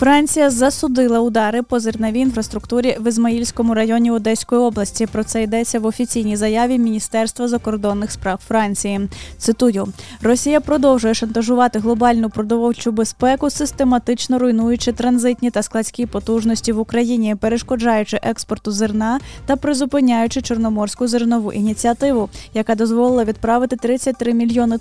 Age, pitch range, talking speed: 10-29, 215-245 Hz, 120 wpm